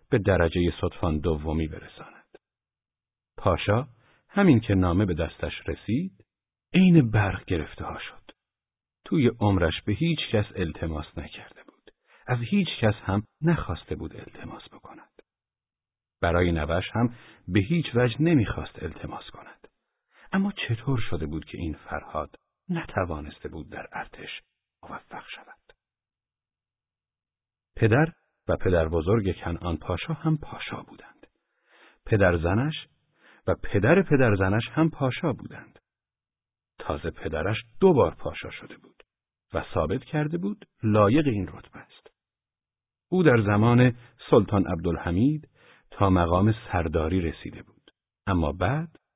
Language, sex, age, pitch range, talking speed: Persian, male, 50-69, 90-125 Hz, 120 wpm